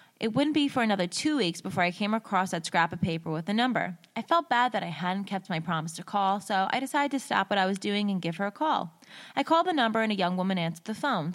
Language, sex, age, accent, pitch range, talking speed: English, female, 20-39, American, 175-235 Hz, 285 wpm